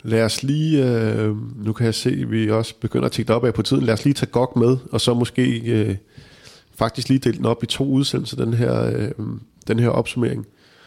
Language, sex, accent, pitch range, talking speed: Danish, male, native, 105-120 Hz, 225 wpm